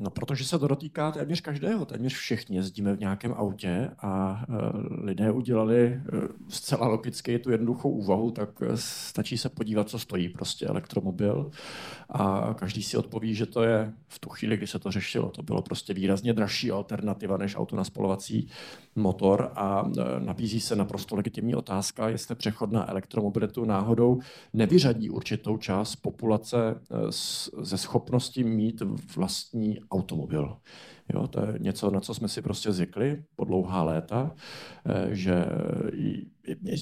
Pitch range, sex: 100-120 Hz, male